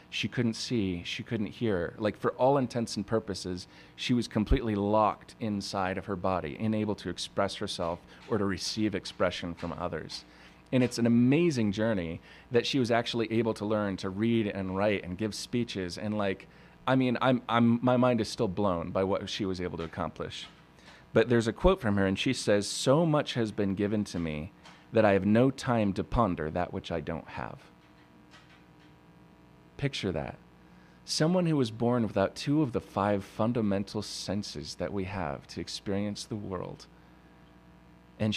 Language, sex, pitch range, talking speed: English, male, 85-115 Hz, 180 wpm